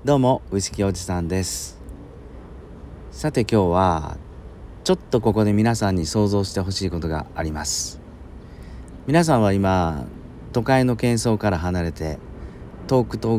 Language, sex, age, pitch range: Japanese, male, 40-59, 80-110 Hz